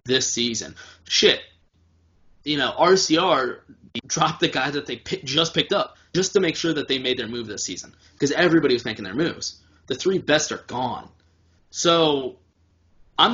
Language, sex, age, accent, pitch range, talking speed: English, male, 20-39, American, 95-140 Hz, 175 wpm